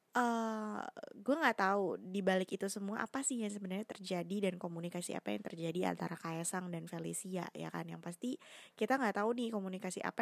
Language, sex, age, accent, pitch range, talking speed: Indonesian, female, 20-39, native, 185-235 Hz, 190 wpm